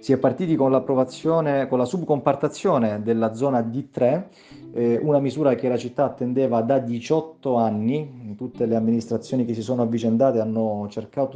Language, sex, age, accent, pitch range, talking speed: Italian, male, 30-49, native, 110-135 Hz, 160 wpm